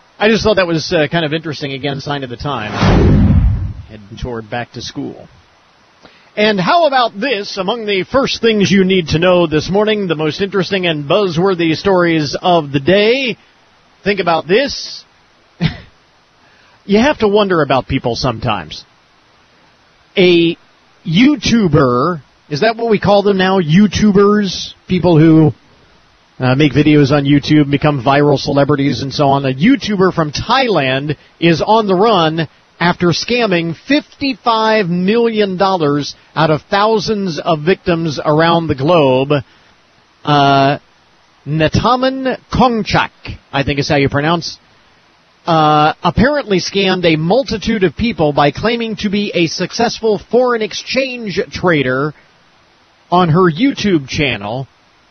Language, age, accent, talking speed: English, 40-59, American, 135 wpm